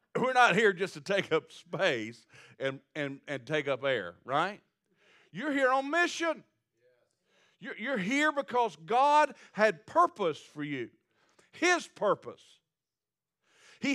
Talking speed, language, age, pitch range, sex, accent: 130 wpm, English, 50-69, 180-250 Hz, male, American